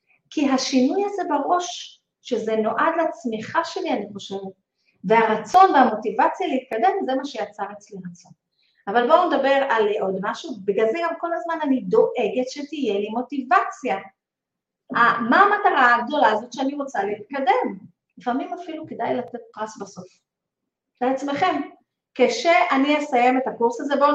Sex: female